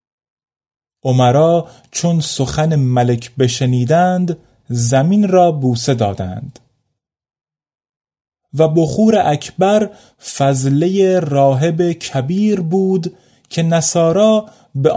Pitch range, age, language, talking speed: 130-175 Hz, 30-49, Persian, 75 wpm